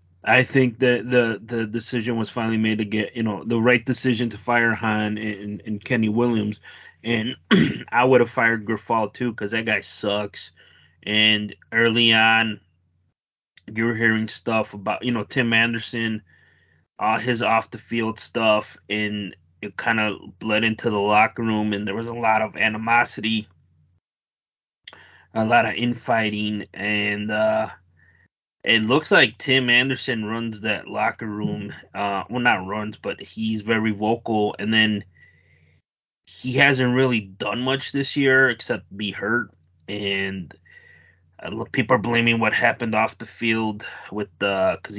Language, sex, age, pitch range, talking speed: English, male, 20-39, 100-115 Hz, 150 wpm